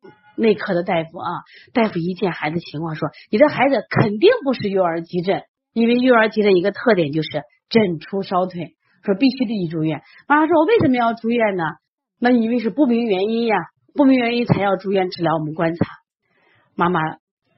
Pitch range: 160-230 Hz